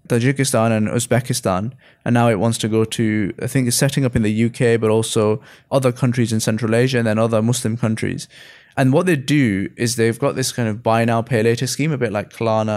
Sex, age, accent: male, 20-39, British